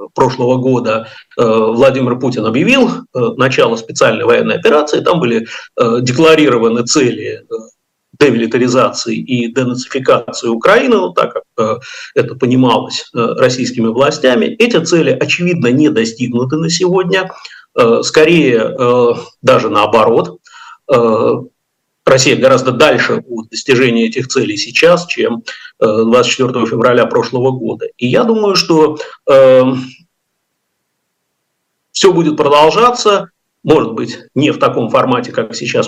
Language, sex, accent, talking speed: Russian, male, native, 105 wpm